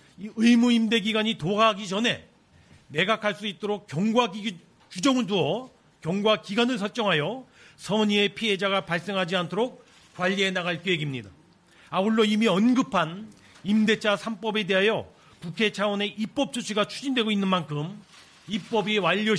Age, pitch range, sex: 40-59, 180-220 Hz, male